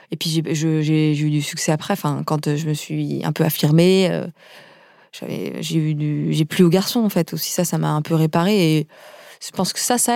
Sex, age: female, 20-39